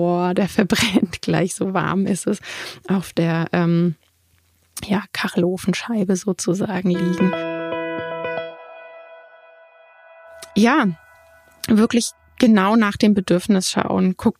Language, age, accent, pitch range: German, 20-39, German, 180-210 Hz